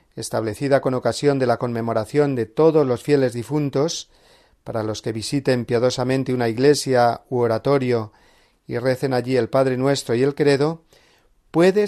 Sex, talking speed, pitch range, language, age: male, 150 wpm, 120-145 Hz, Spanish, 40-59